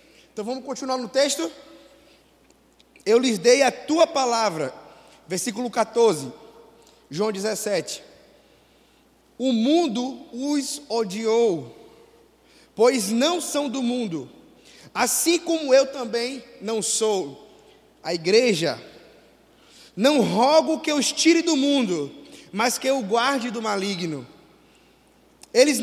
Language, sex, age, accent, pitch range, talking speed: Portuguese, male, 20-39, Brazilian, 230-285 Hz, 110 wpm